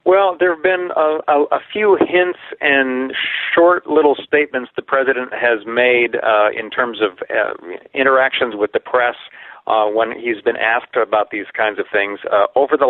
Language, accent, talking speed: English, American, 180 wpm